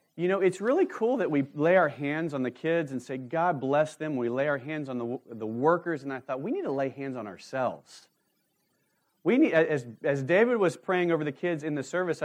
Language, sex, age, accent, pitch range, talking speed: English, male, 40-59, American, 115-150 Hz, 240 wpm